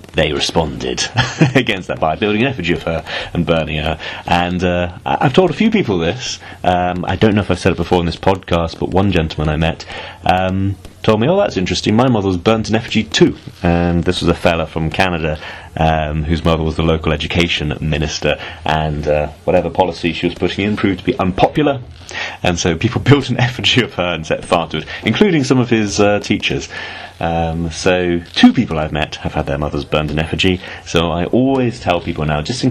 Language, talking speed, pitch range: English, 215 wpm, 80-100 Hz